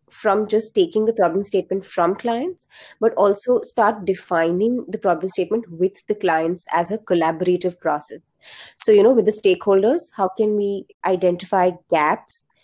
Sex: female